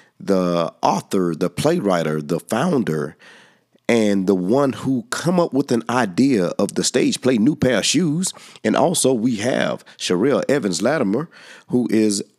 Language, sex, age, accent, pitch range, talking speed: English, male, 40-59, American, 85-115 Hz, 150 wpm